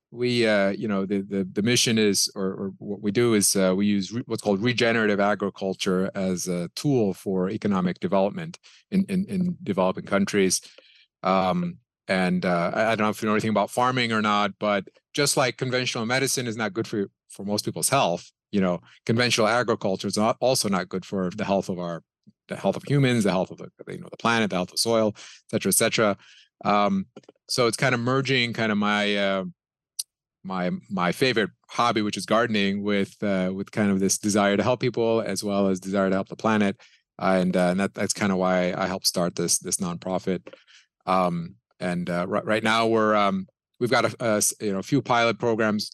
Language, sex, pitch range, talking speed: English, male, 95-115 Hz, 210 wpm